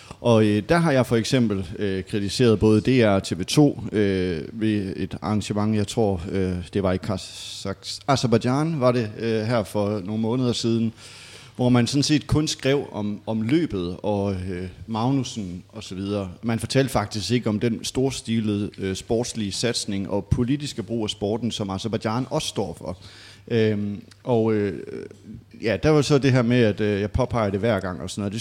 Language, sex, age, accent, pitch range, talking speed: Danish, male, 30-49, native, 100-125 Hz, 180 wpm